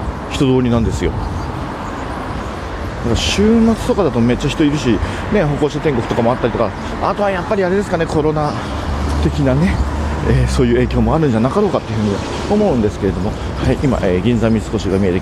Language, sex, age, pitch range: Japanese, male, 40-59, 85-140 Hz